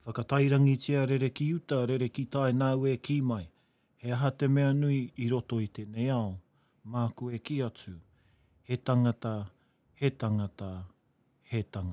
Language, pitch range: English, 120-145 Hz